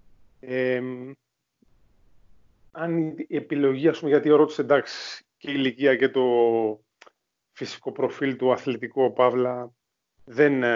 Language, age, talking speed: Greek, 30-49, 105 wpm